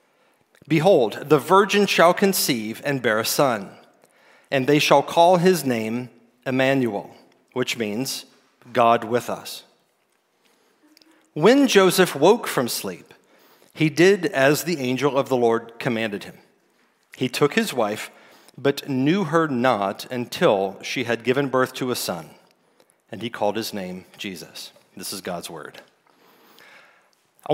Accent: American